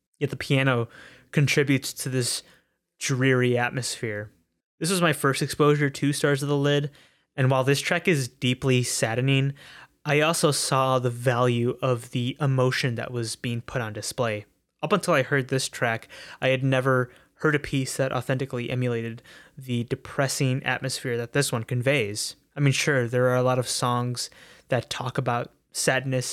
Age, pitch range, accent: 20-39, 125-145 Hz, American